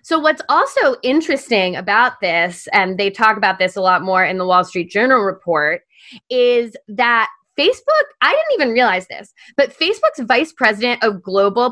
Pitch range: 200-270 Hz